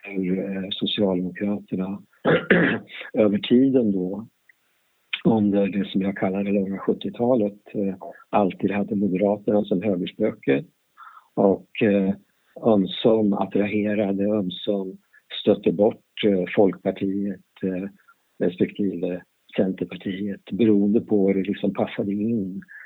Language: Swedish